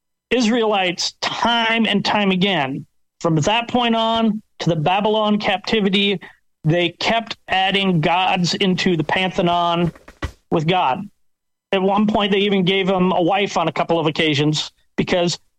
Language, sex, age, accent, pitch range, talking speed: English, male, 40-59, American, 175-210 Hz, 140 wpm